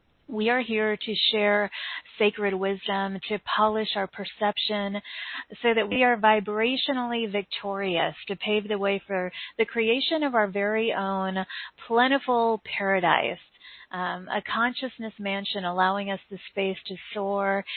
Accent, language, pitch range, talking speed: American, English, 195-230 Hz, 135 wpm